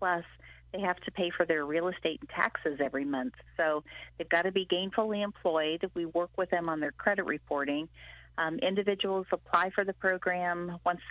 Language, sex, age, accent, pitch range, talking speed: English, female, 40-59, American, 155-185 Hz, 190 wpm